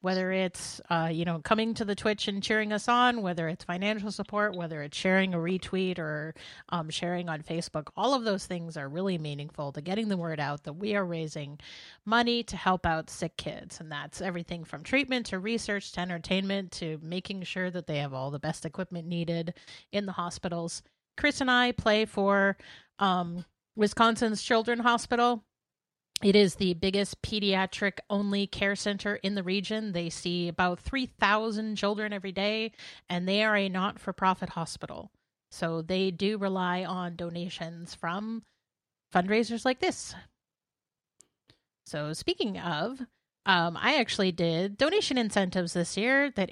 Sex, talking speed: female, 165 wpm